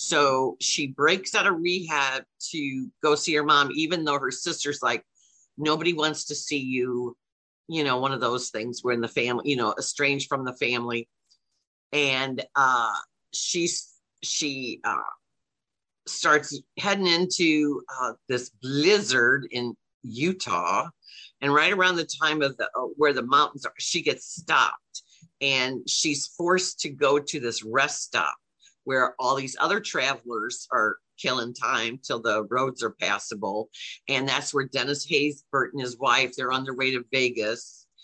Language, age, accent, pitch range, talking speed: English, 50-69, American, 125-155 Hz, 160 wpm